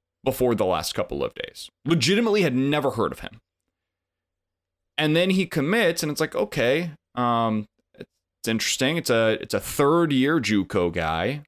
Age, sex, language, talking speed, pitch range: 20-39, male, English, 160 wpm, 105-150 Hz